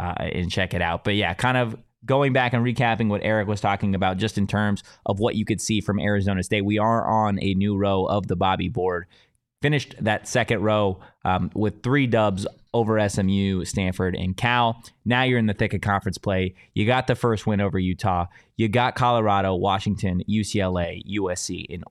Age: 20-39